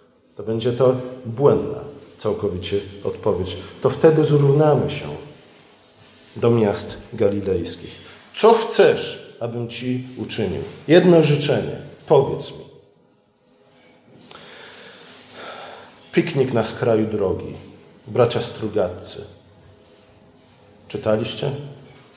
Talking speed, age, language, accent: 80 wpm, 50-69, Polish, native